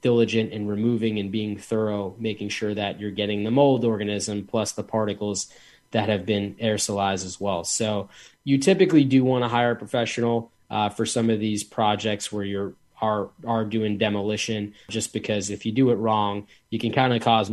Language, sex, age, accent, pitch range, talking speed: English, male, 20-39, American, 105-125 Hz, 190 wpm